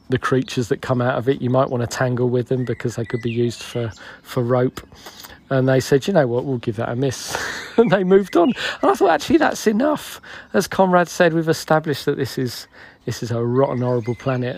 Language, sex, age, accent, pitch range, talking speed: English, male, 40-59, British, 120-145 Hz, 235 wpm